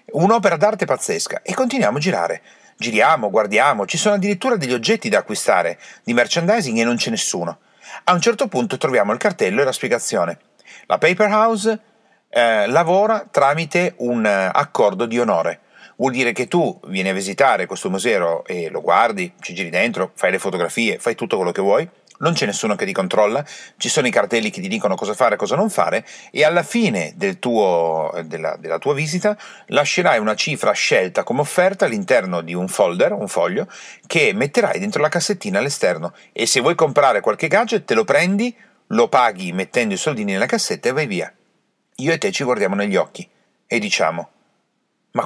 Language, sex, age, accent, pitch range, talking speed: Italian, male, 40-59, native, 125-210 Hz, 185 wpm